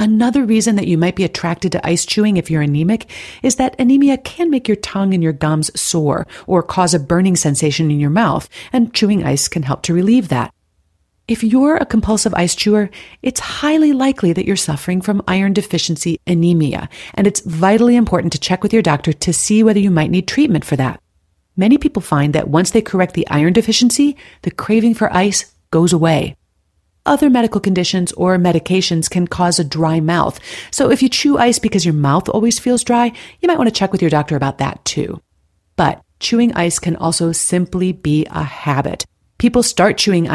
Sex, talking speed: female, 200 wpm